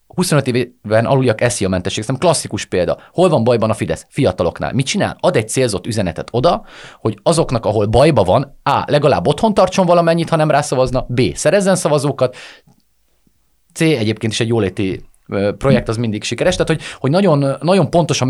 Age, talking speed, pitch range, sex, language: 30-49, 170 wpm, 110-145 Hz, male, Hungarian